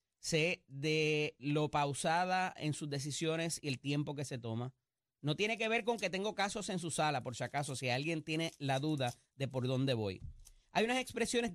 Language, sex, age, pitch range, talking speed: Spanish, male, 30-49, 140-210 Hz, 205 wpm